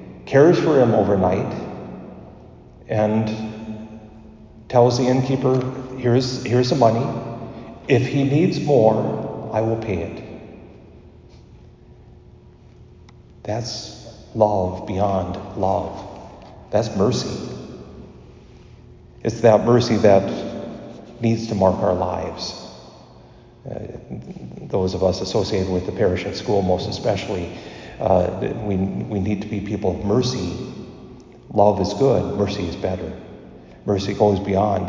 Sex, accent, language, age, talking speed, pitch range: male, American, English, 50-69, 110 wpm, 95-110 Hz